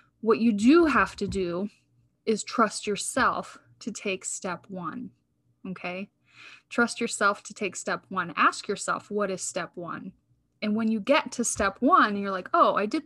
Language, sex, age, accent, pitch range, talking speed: English, female, 20-39, American, 190-230 Hz, 175 wpm